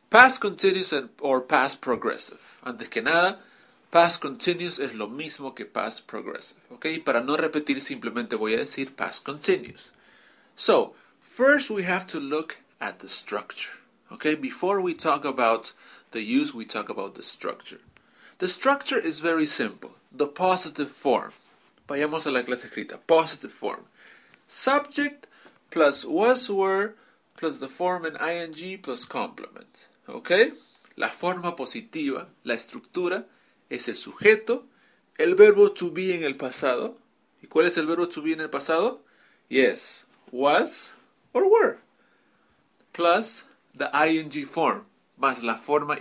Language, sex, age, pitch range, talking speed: English, male, 30-49, 150-240 Hz, 145 wpm